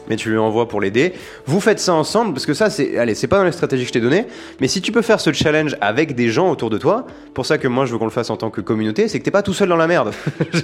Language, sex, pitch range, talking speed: French, male, 125-175 Hz, 335 wpm